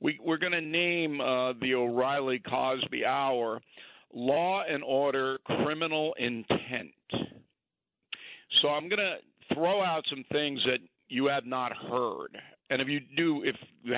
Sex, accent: male, American